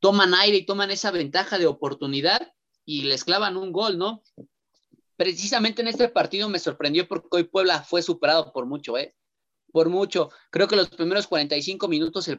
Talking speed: 180 wpm